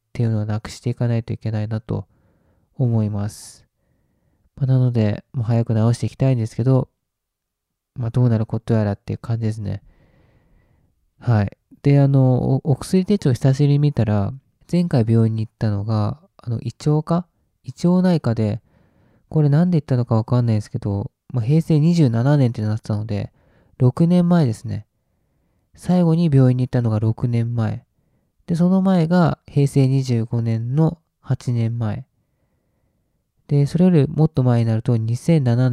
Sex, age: male, 20-39